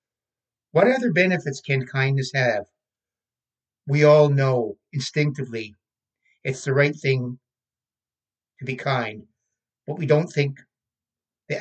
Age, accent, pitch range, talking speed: 60-79, American, 130-160 Hz, 115 wpm